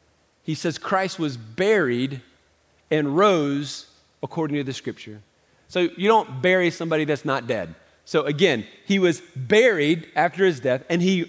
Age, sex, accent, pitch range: 40-59, male, American, 160-205 Hz